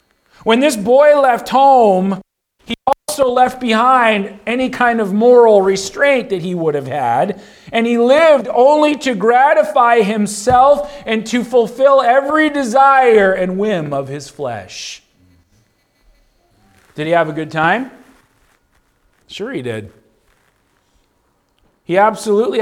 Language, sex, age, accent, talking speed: English, male, 40-59, American, 125 wpm